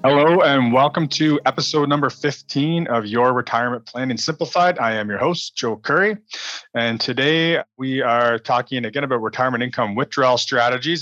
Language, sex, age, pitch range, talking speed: English, male, 30-49, 105-135 Hz, 160 wpm